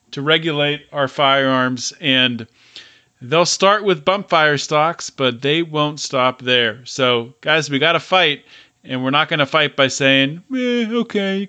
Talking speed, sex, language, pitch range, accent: 170 wpm, male, English, 130-170 Hz, American